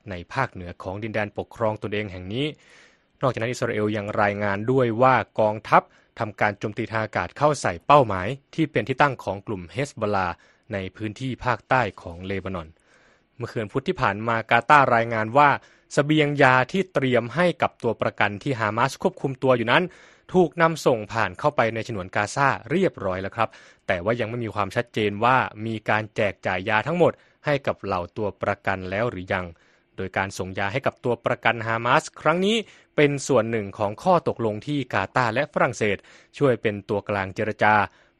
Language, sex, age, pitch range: Thai, male, 20-39, 100-130 Hz